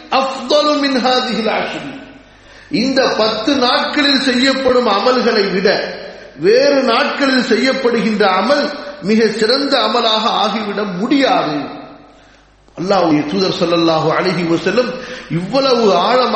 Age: 50-69